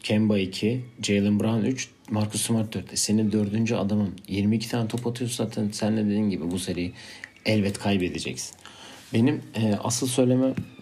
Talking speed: 150 wpm